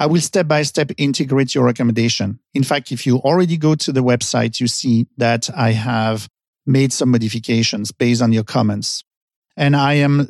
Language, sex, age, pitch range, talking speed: English, male, 50-69, 120-150 Hz, 175 wpm